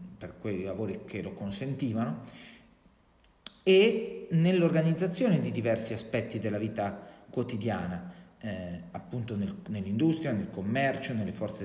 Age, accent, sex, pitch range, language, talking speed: 40-59, native, male, 110-165 Hz, Italian, 110 wpm